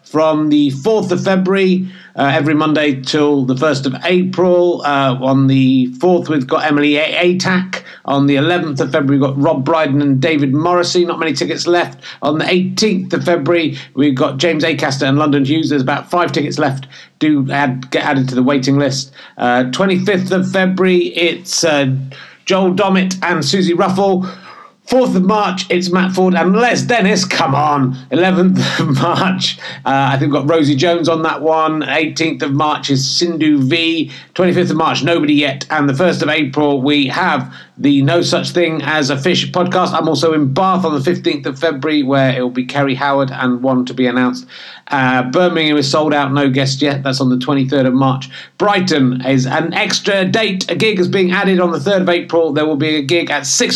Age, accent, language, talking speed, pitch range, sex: 50-69, British, English, 200 wpm, 135-175 Hz, male